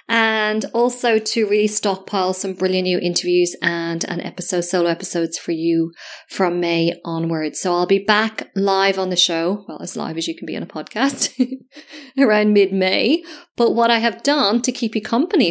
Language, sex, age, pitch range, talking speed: English, female, 30-49, 175-220 Hz, 190 wpm